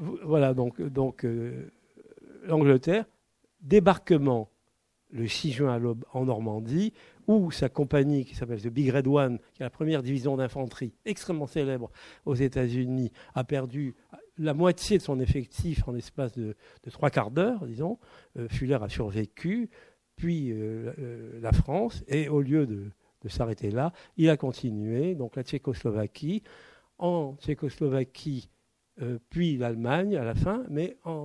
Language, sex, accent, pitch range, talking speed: French, male, French, 115-155 Hz, 150 wpm